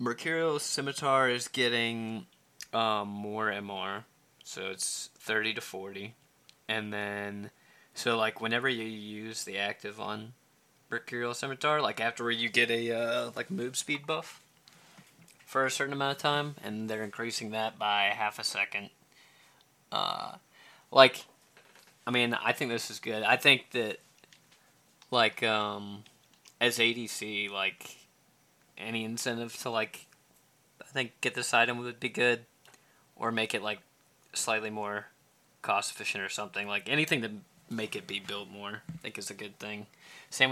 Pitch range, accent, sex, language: 105-120 Hz, American, male, English